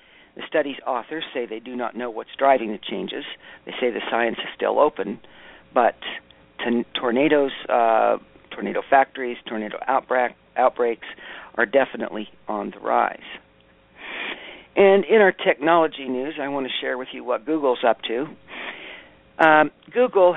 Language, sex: English, male